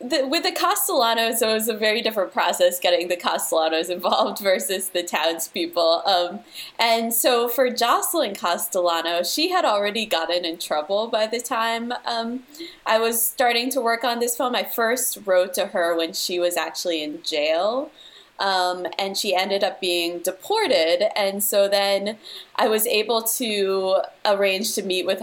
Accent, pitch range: American, 175-235 Hz